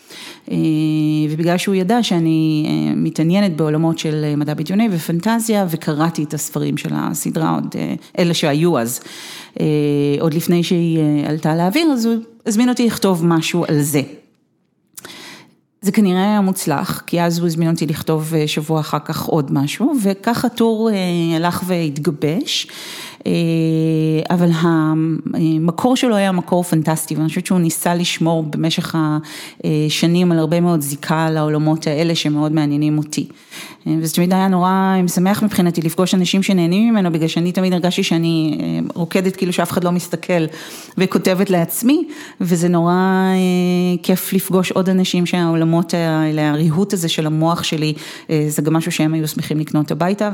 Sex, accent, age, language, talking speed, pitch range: female, native, 40-59, Hebrew, 140 wpm, 155-185 Hz